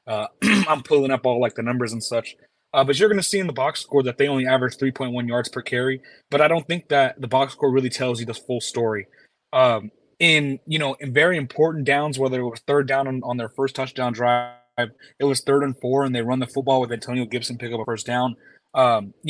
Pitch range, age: 125-145 Hz, 20-39